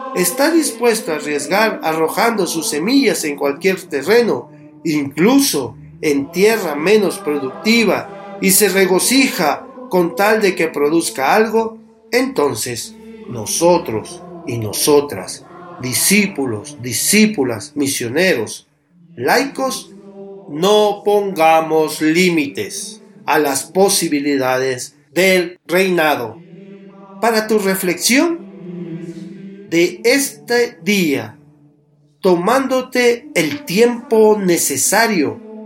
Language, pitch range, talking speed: Spanish, 150-210 Hz, 85 wpm